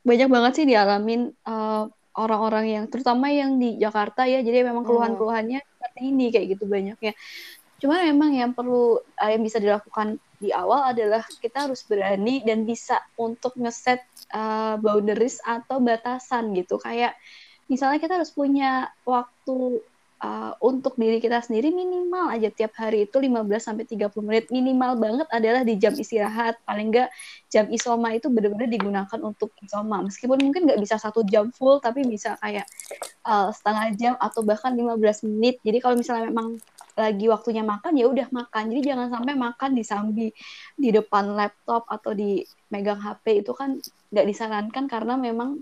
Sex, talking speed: female, 160 wpm